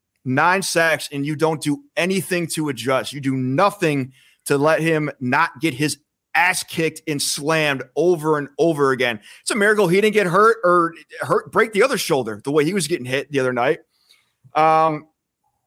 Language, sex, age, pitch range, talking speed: English, male, 30-49, 125-155 Hz, 190 wpm